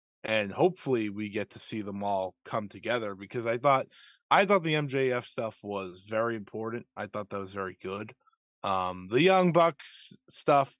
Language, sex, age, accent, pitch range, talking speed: English, male, 20-39, American, 105-155 Hz, 180 wpm